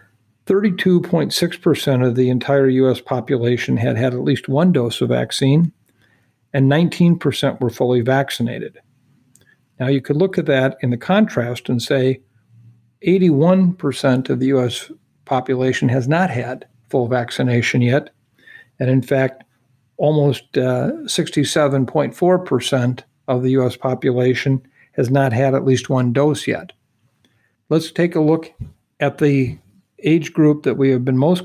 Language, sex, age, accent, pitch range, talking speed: English, male, 50-69, American, 125-145 Hz, 135 wpm